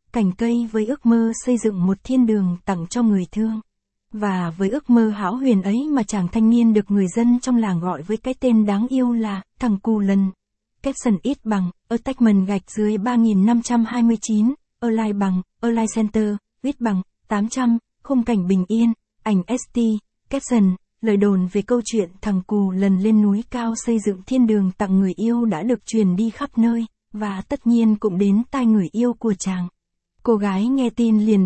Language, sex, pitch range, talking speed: Vietnamese, female, 200-235 Hz, 195 wpm